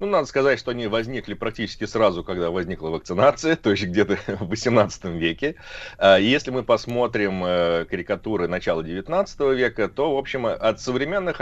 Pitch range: 90-125 Hz